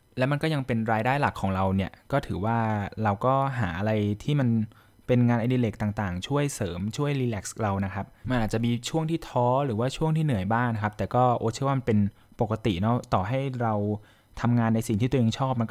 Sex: male